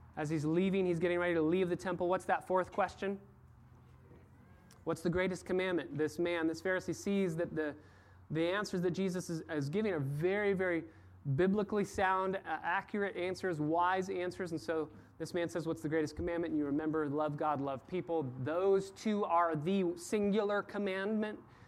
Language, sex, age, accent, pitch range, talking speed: English, male, 30-49, American, 155-185 Hz, 175 wpm